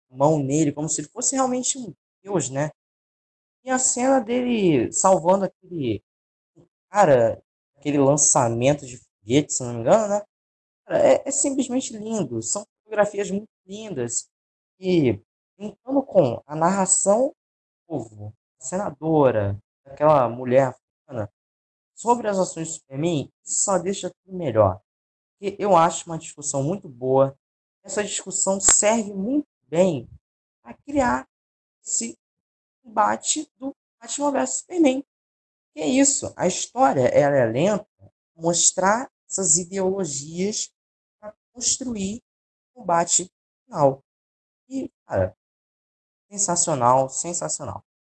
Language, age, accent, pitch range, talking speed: Portuguese, 20-39, Brazilian, 135-205 Hz, 120 wpm